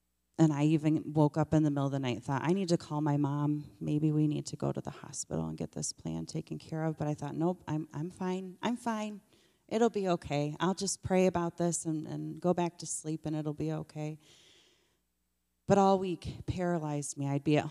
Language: English